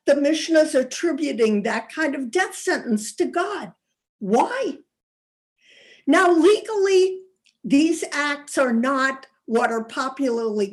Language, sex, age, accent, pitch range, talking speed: English, female, 50-69, American, 220-290 Hz, 110 wpm